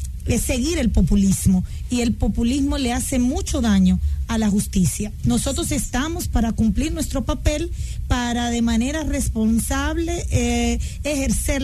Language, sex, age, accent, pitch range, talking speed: English, female, 40-59, American, 190-255 Hz, 130 wpm